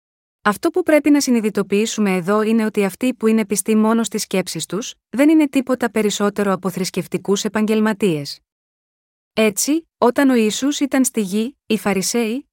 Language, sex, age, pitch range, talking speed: Greek, female, 20-39, 205-255 Hz, 155 wpm